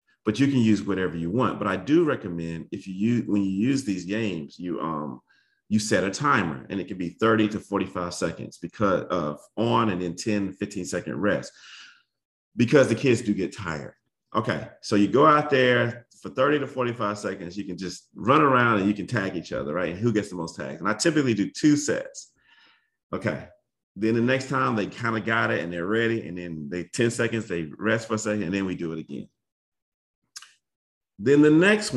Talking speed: 215 wpm